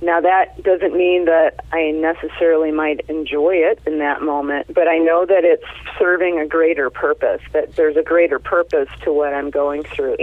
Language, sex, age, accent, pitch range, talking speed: English, female, 30-49, American, 150-180 Hz, 190 wpm